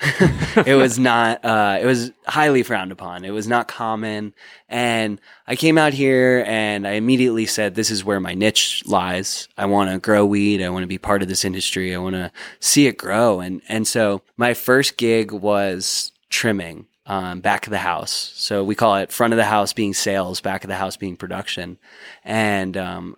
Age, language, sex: 20-39, English, male